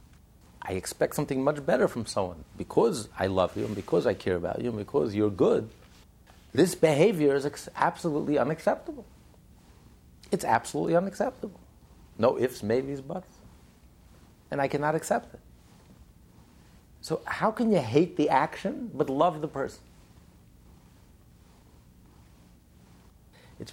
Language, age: English, 50-69